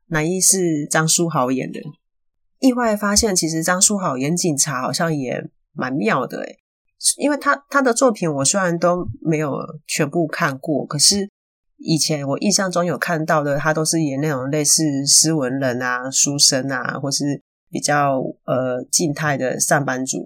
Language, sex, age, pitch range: Chinese, female, 30-49, 140-180 Hz